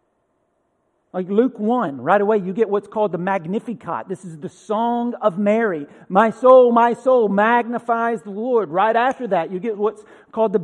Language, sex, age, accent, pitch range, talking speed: English, male, 40-59, American, 205-245 Hz, 180 wpm